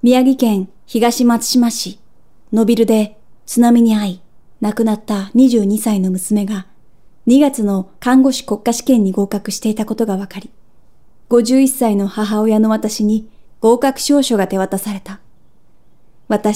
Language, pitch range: Japanese, 205-235 Hz